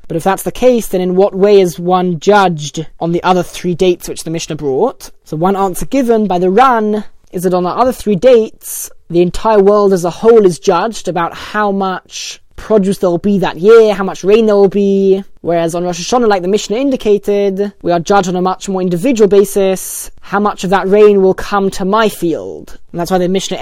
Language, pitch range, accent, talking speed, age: English, 180-210 Hz, British, 230 wpm, 20-39